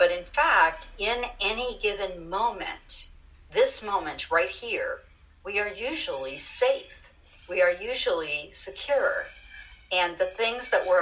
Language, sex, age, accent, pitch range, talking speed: English, female, 50-69, American, 170-285 Hz, 130 wpm